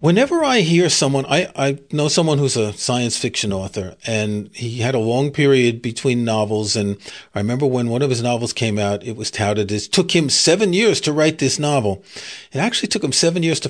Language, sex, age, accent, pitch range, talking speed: English, male, 40-59, American, 125-180 Hz, 220 wpm